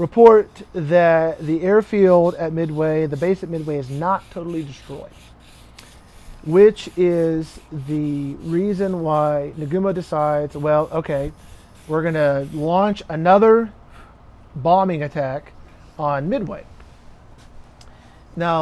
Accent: American